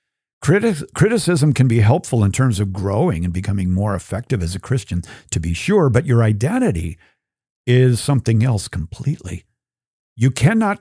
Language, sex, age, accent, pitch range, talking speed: English, male, 50-69, American, 105-140 Hz, 150 wpm